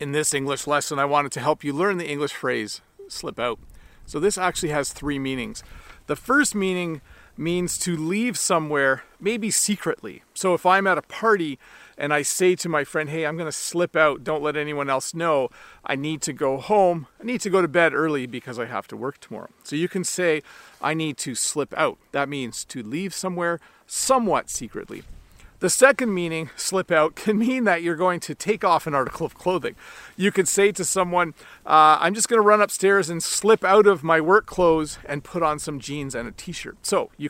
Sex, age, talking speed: male, 40-59, 210 wpm